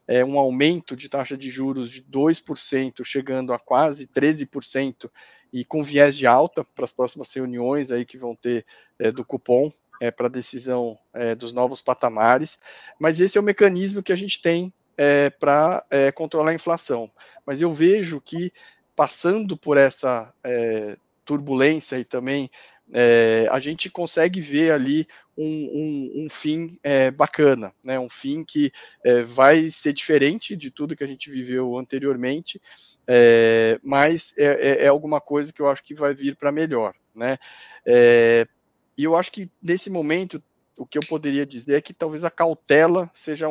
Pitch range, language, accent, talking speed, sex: 130-160 Hz, Portuguese, Brazilian, 150 wpm, male